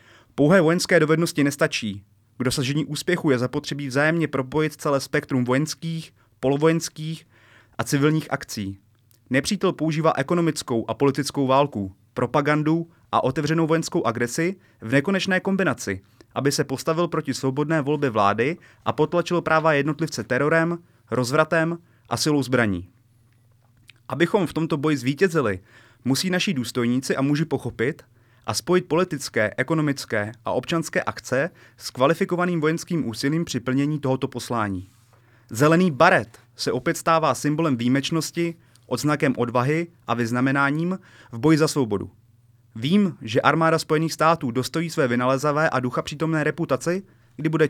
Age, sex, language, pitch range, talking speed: 30-49, male, Czech, 120-160 Hz, 130 wpm